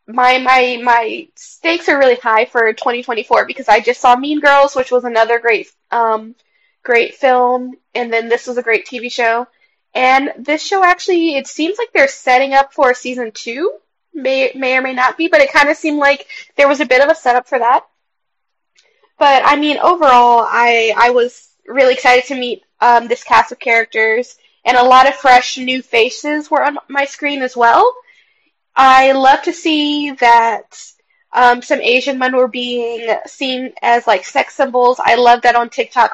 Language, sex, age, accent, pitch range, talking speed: English, female, 20-39, American, 240-300 Hz, 190 wpm